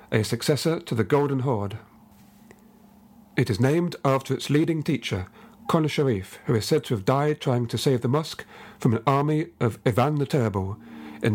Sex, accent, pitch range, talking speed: male, British, 125-165 Hz, 180 wpm